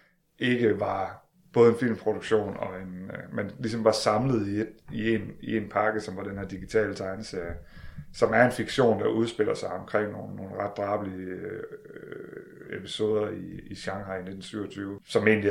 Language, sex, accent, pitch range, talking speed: Danish, male, native, 95-120 Hz, 175 wpm